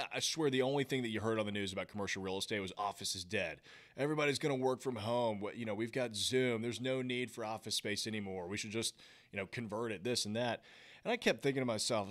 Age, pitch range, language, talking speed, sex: 30-49, 100-125 Hz, English, 270 wpm, male